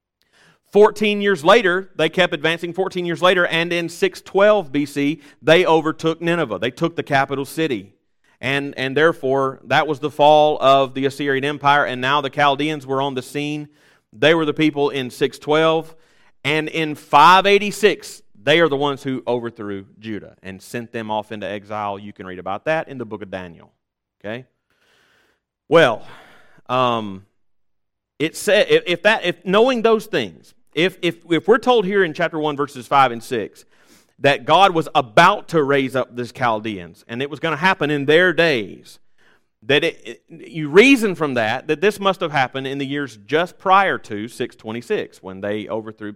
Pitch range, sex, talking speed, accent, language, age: 125-175 Hz, male, 175 wpm, American, English, 30-49